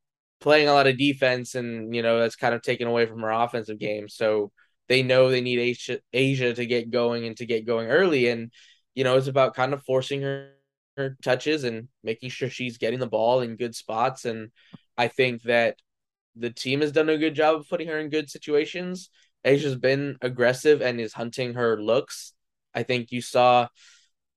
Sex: male